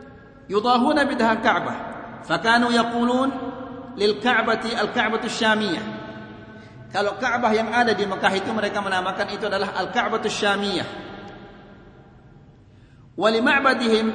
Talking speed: 65 wpm